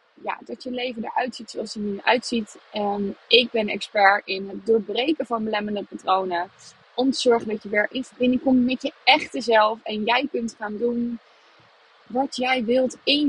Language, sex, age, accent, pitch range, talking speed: Dutch, female, 20-39, Dutch, 220-275 Hz, 190 wpm